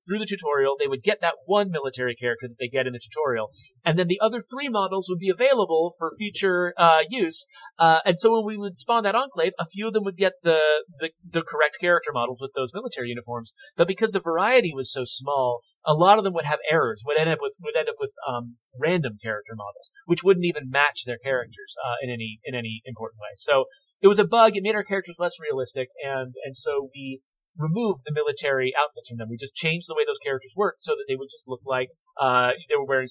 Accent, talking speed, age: American, 240 wpm, 30-49